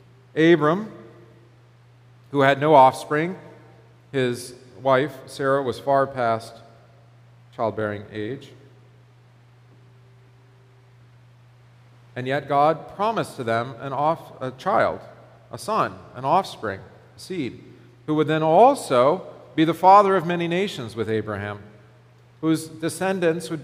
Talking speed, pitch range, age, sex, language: 110 wpm, 120-145 Hz, 40-59, male, English